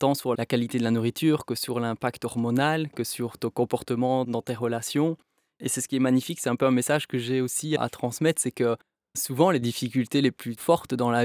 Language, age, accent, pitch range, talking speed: French, 20-39, French, 125-145 Hz, 235 wpm